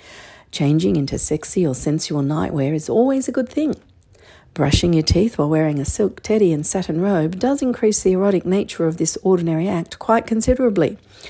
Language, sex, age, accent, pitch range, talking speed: English, female, 50-69, Australian, 140-215 Hz, 175 wpm